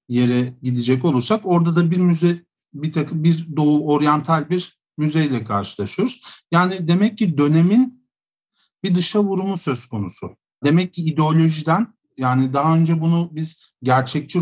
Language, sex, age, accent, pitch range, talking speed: Turkish, male, 50-69, native, 125-160 Hz, 135 wpm